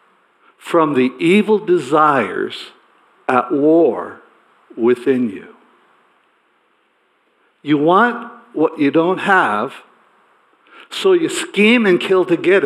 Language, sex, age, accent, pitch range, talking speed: English, male, 60-79, American, 140-215 Hz, 100 wpm